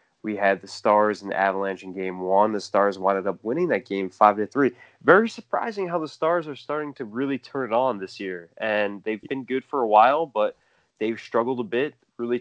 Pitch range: 100-120 Hz